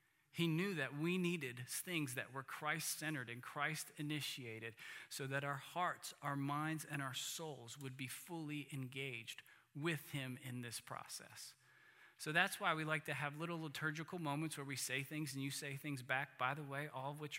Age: 40-59